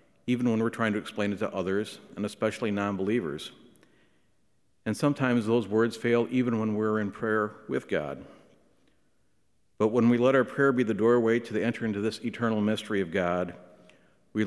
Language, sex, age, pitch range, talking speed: English, male, 50-69, 95-115 Hz, 180 wpm